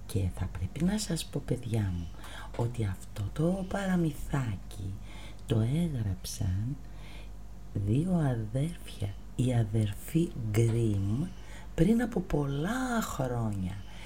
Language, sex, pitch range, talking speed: Greek, female, 100-155 Hz, 100 wpm